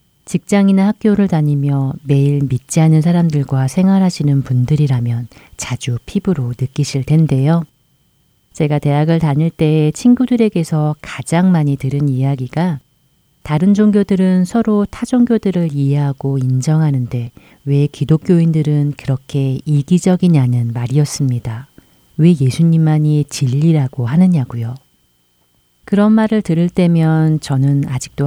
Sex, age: female, 40-59